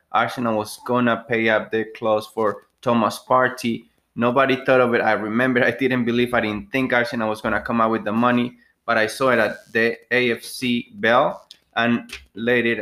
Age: 20-39